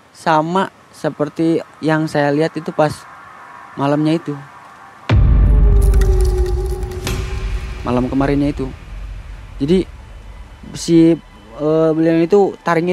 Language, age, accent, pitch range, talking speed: Indonesian, 20-39, native, 105-170 Hz, 85 wpm